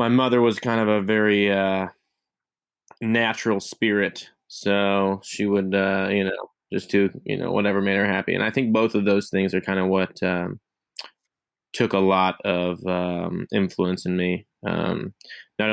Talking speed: 175 wpm